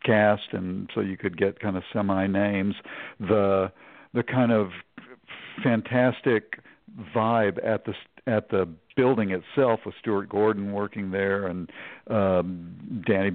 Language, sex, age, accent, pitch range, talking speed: English, male, 60-79, American, 95-115 Hz, 135 wpm